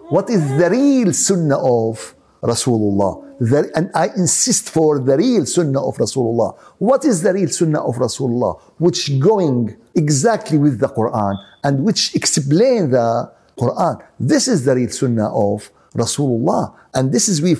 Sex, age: male, 60-79